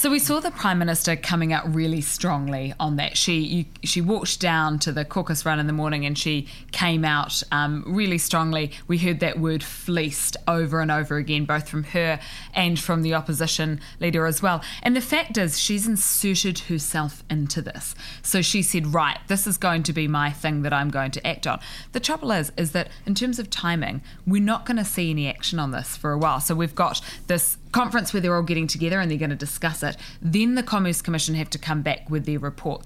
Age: 20-39